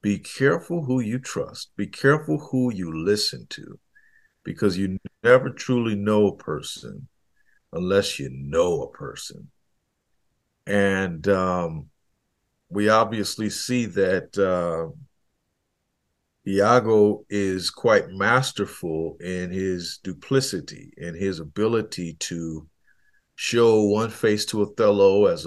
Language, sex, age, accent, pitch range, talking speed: English, male, 50-69, American, 95-120 Hz, 110 wpm